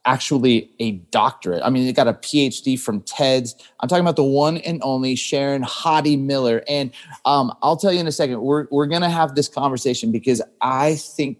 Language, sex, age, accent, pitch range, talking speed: English, male, 30-49, American, 120-150 Hz, 205 wpm